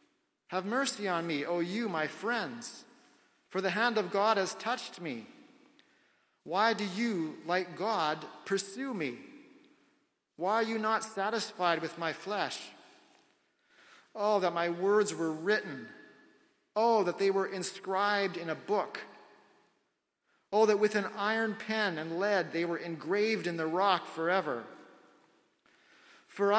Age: 40-59